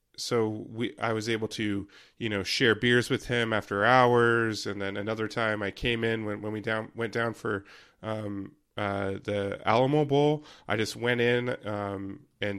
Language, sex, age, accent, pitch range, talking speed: English, male, 30-49, American, 105-115 Hz, 185 wpm